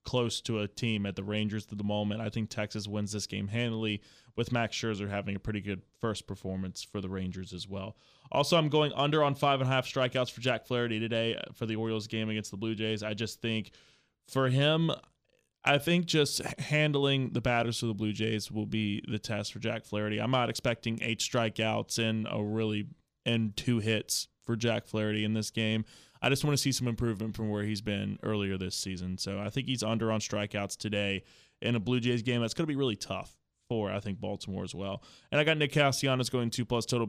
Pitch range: 105-120 Hz